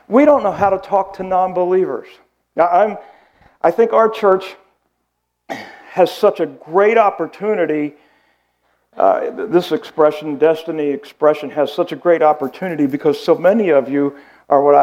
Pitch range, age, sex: 140-180 Hz, 50-69, male